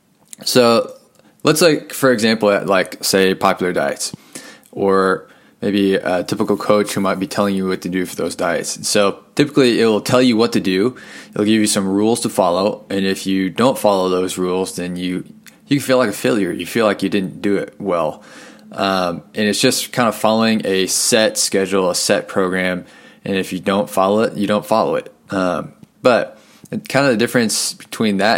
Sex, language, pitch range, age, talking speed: male, English, 95-110 Hz, 20-39, 205 wpm